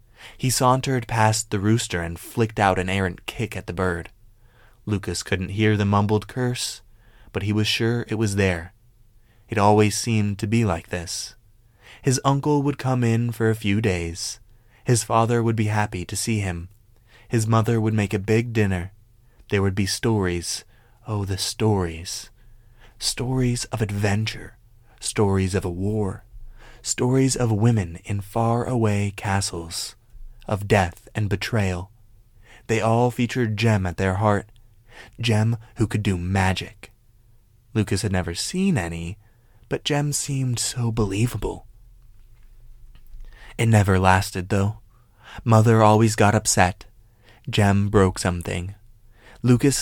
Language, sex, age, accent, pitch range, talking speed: English, male, 20-39, American, 100-115 Hz, 140 wpm